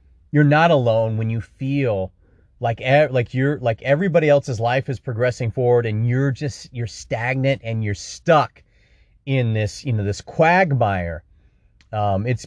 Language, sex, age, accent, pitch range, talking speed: English, male, 30-49, American, 110-145 Hz, 155 wpm